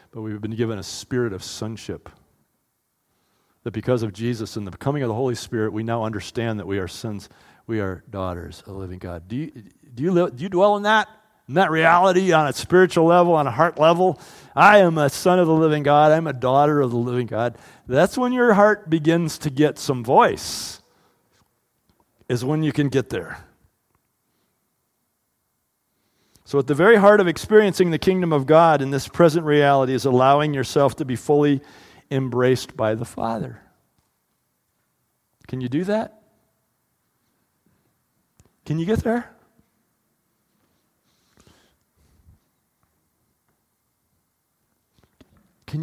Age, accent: 40-59, American